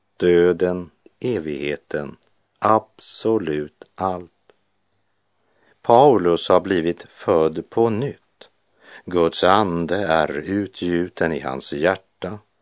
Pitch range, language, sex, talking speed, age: 80-100 Hz, Swedish, male, 80 wpm, 50-69